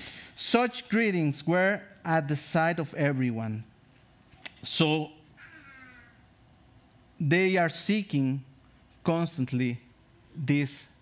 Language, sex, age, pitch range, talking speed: English, male, 50-69, 135-195 Hz, 75 wpm